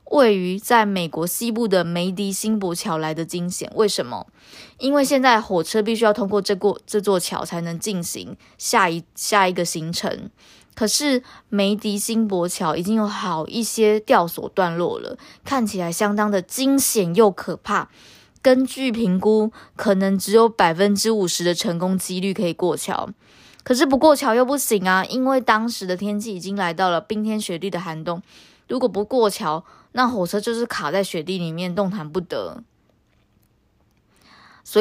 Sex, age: female, 20-39